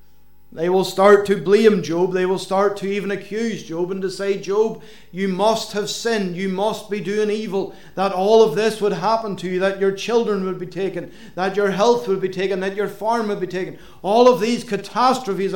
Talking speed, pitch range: 215 wpm, 165-200 Hz